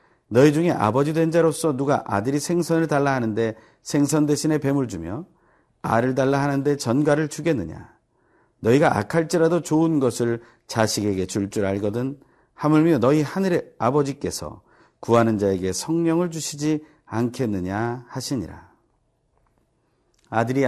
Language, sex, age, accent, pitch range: Korean, male, 40-59, native, 110-155 Hz